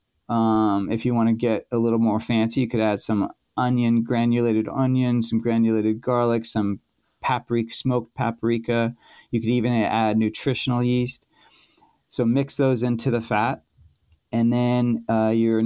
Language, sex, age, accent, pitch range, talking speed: English, male, 30-49, American, 115-130 Hz, 155 wpm